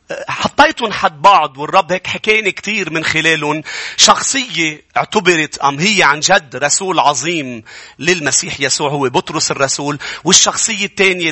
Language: English